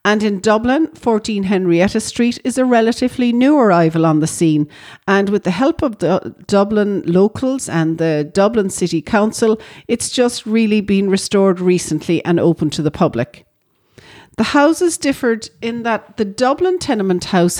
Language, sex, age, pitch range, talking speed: English, female, 40-59, 175-220 Hz, 160 wpm